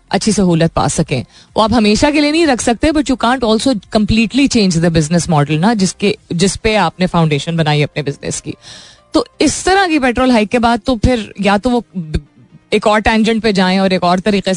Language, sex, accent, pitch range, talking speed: Hindi, female, native, 165-215 Hz, 220 wpm